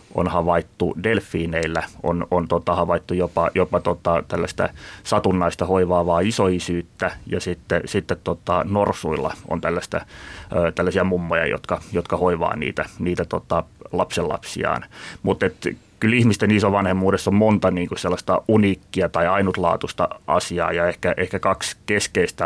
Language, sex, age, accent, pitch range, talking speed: Finnish, male, 30-49, native, 85-95 Hz, 125 wpm